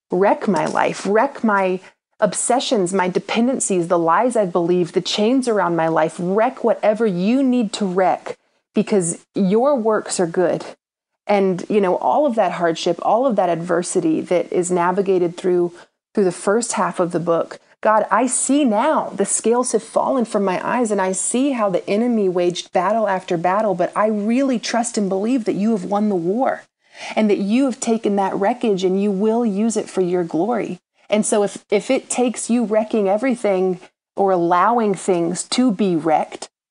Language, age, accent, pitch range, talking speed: English, 30-49, American, 180-215 Hz, 185 wpm